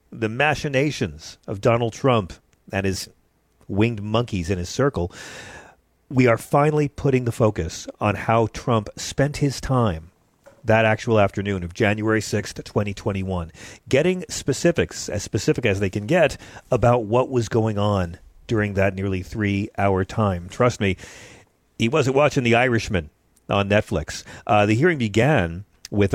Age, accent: 40-59, American